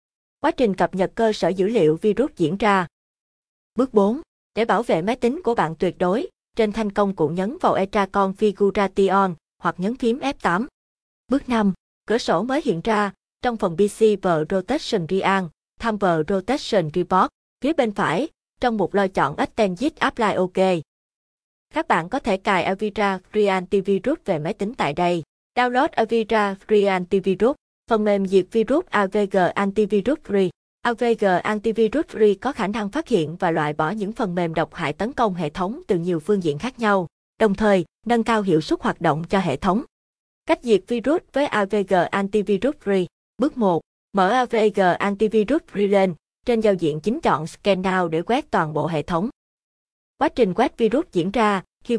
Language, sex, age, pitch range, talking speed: Vietnamese, female, 20-39, 185-230 Hz, 180 wpm